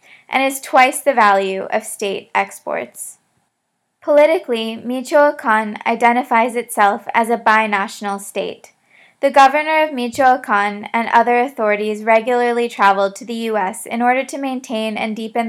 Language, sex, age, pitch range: English, female, 20-39, 215-255 Hz